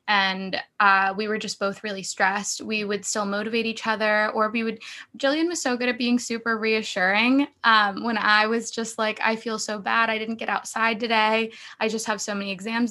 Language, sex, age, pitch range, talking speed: English, female, 20-39, 205-230 Hz, 215 wpm